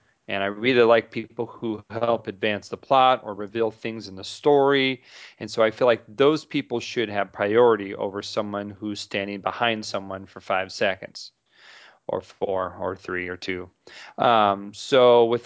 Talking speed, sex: 170 wpm, male